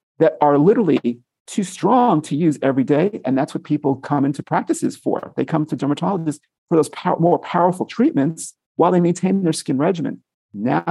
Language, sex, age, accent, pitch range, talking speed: English, male, 50-69, American, 125-165 Hz, 180 wpm